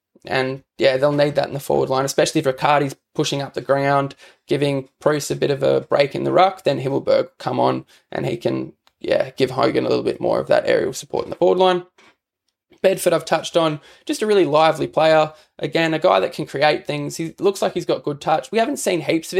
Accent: Australian